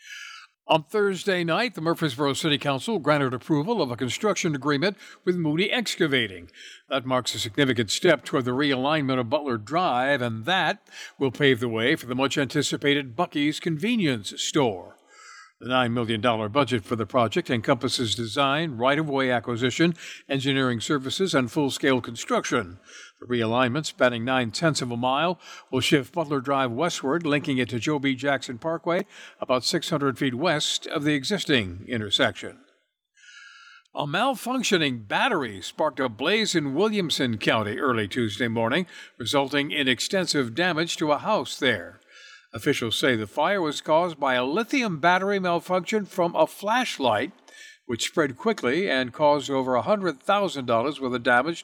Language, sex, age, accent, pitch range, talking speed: English, male, 60-79, American, 125-170 Hz, 150 wpm